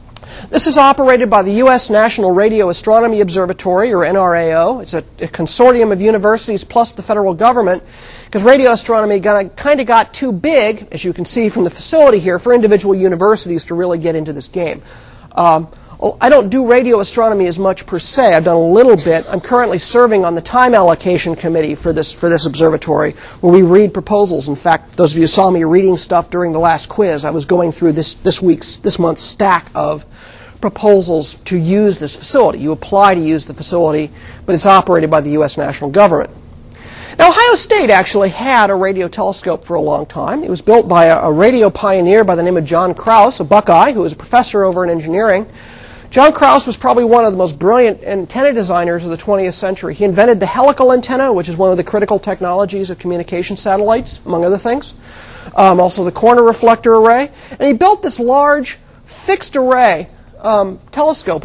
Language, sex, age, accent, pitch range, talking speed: English, male, 40-59, American, 170-235 Hz, 200 wpm